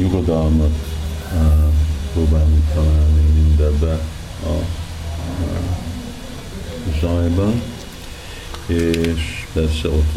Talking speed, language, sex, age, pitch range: 65 wpm, Hungarian, male, 50-69, 75-85 Hz